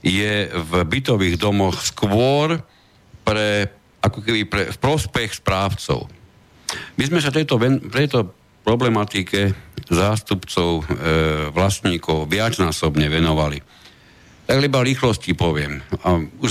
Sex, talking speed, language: male, 110 wpm, Slovak